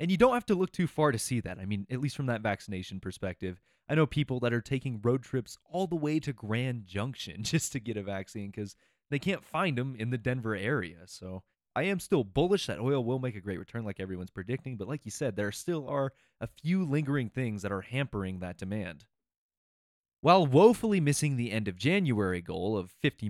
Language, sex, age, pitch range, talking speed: English, male, 20-39, 105-150 Hz, 225 wpm